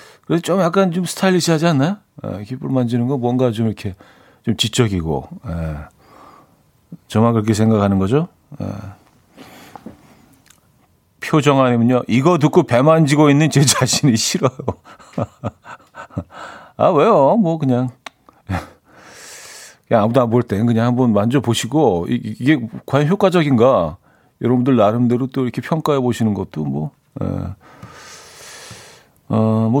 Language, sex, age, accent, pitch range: Korean, male, 40-59, native, 110-150 Hz